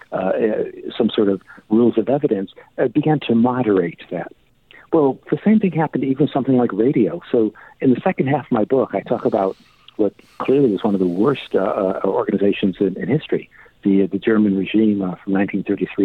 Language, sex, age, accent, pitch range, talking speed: English, male, 50-69, American, 100-135 Hz, 200 wpm